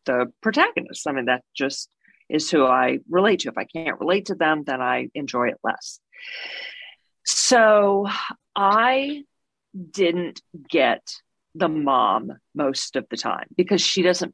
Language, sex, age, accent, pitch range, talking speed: English, female, 40-59, American, 155-235 Hz, 145 wpm